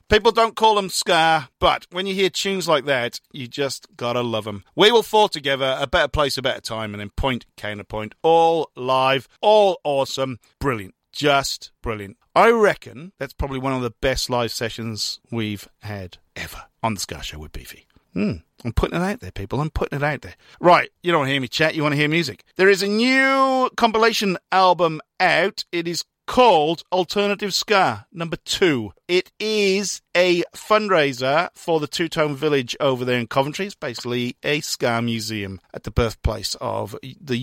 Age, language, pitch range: 40-59, English, 120-175 Hz